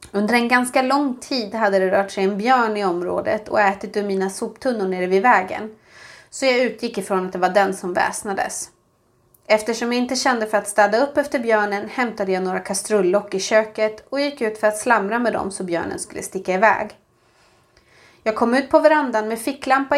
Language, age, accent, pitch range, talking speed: Swedish, 30-49, native, 195-240 Hz, 200 wpm